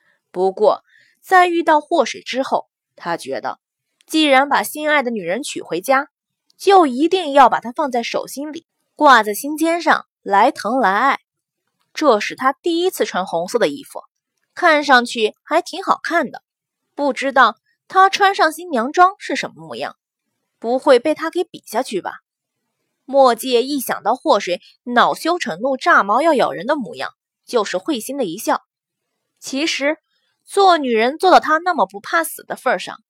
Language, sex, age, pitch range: Chinese, female, 20-39, 250-330 Hz